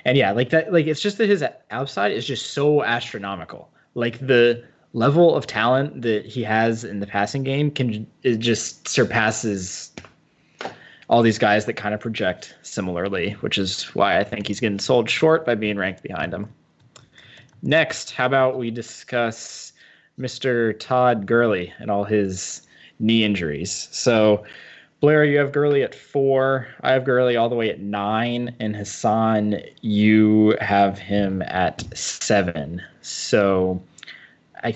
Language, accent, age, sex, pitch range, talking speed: English, American, 20-39, male, 105-125 Hz, 150 wpm